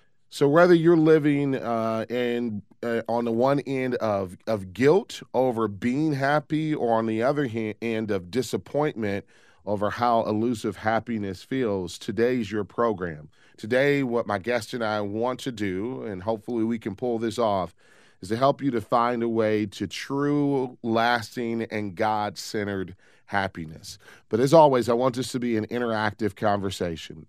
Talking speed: 165 wpm